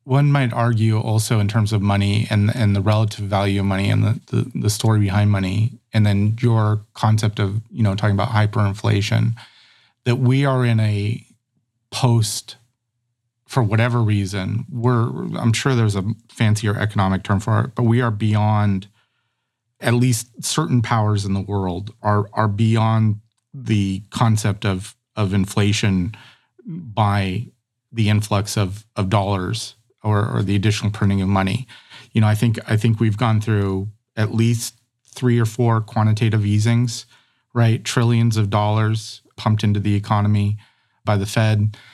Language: English